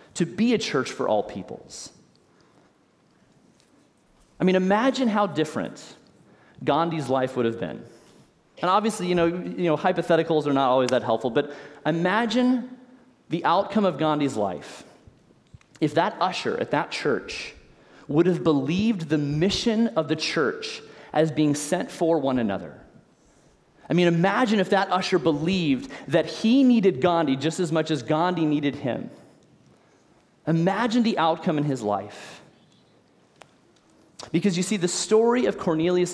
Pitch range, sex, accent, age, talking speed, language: 145-185 Hz, male, American, 30-49, 145 wpm, English